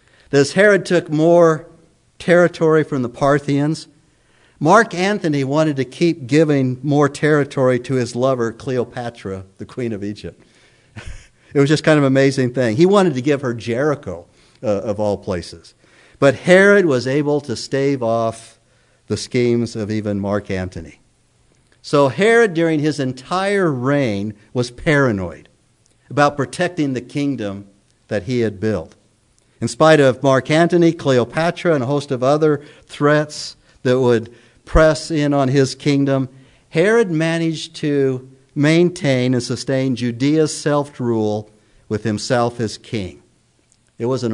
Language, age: English, 50-69